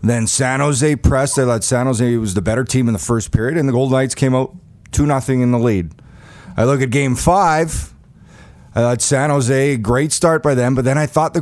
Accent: American